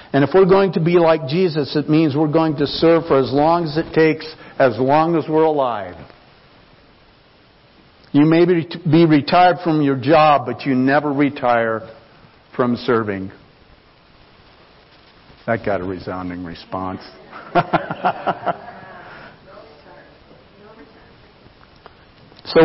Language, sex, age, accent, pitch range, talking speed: English, male, 60-79, American, 120-155 Hz, 115 wpm